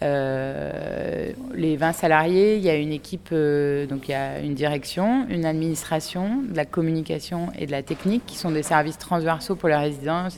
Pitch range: 145-170 Hz